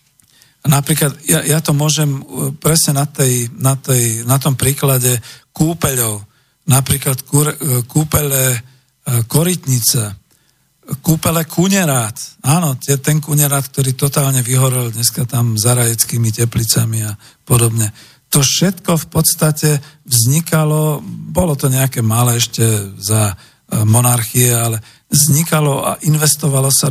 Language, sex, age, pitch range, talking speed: Slovak, male, 50-69, 120-150 Hz, 110 wpm